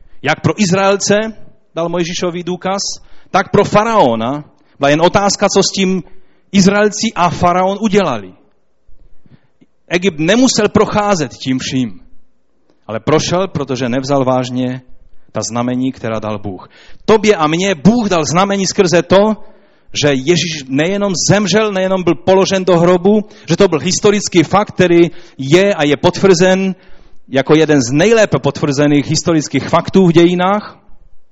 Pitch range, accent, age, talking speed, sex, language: 125-185 Hz, native, 40-59, 135 wpm, male, Czech